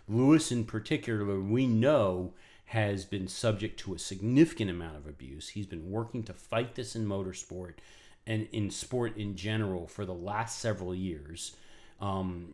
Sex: male